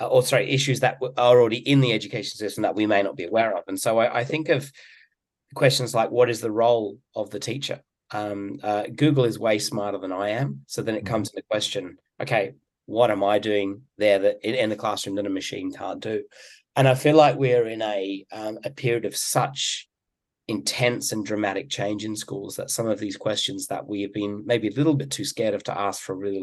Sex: male